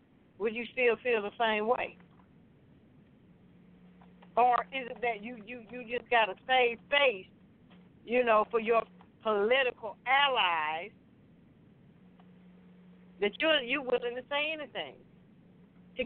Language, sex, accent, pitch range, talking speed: English, female, American, 180-235 Hz, 125 wpm